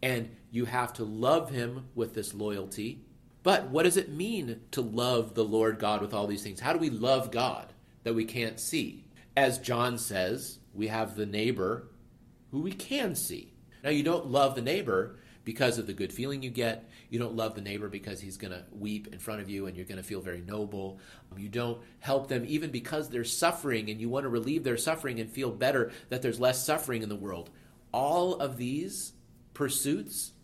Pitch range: 110-140 Hz